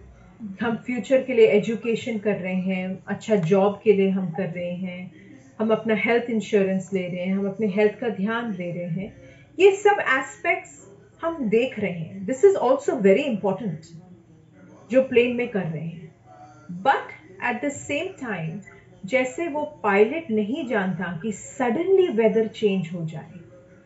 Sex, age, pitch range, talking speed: female, 40-59, 180-255 Hz, 165 wpm